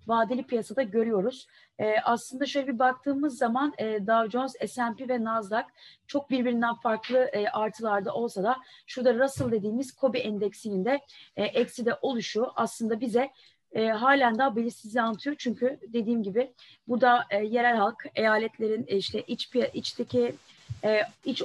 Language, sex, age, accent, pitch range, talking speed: Turkish, female, 30-49, native, 215-260 Hz, 150 wpm